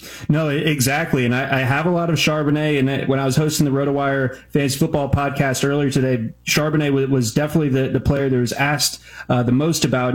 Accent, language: American, English